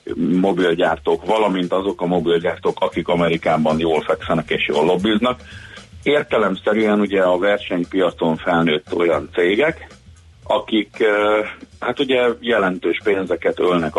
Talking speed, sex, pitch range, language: 105 wpm, male, 85-145 Hz, Hungarian